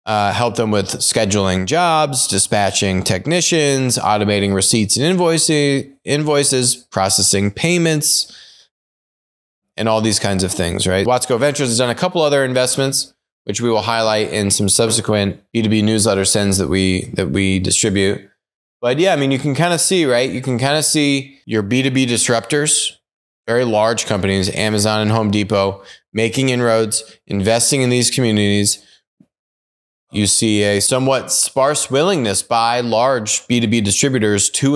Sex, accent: male, American